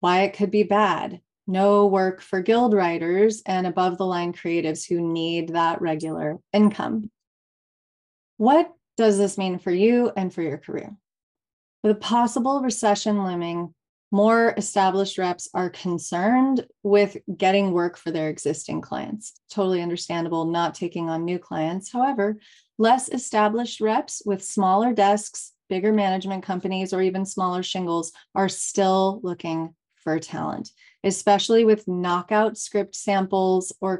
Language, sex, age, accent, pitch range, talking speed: English, female, 30-49, American, 175-215 Hz, 140 wpm